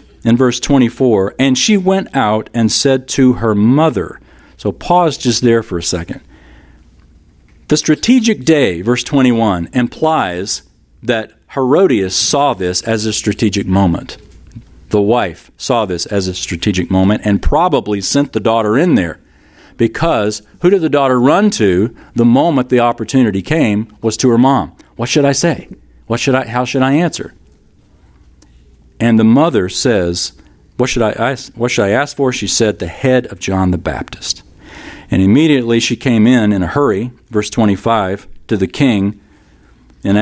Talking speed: 160 wpm